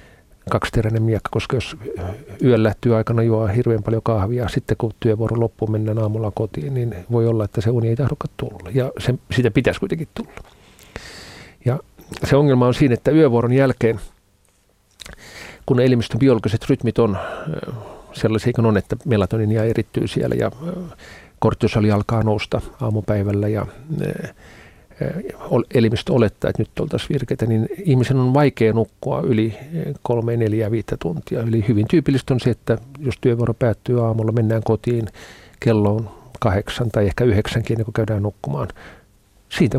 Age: 50-69